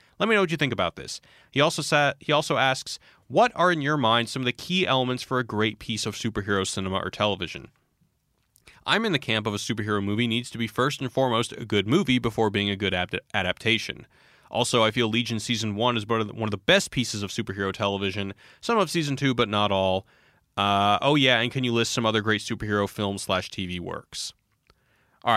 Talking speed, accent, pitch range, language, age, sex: 225 wpm, American, 100-125 Hz, English, 30-49, male